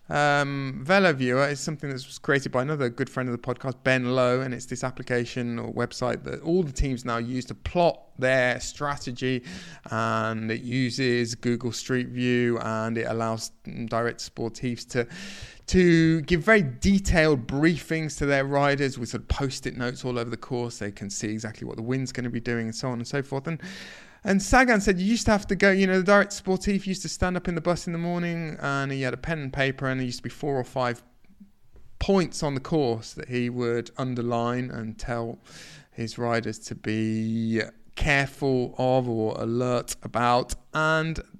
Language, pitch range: English, 120-155 Hz